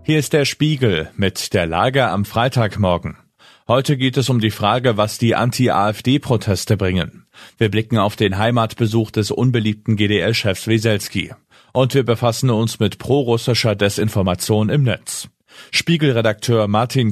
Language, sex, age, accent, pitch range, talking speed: German, male, 40-59, German, 105-125 Hz, 135 wpm